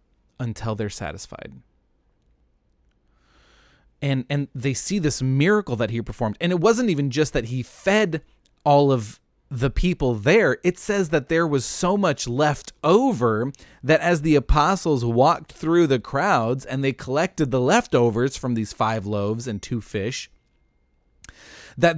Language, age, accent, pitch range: English, 30-49, American, 115-150 Hz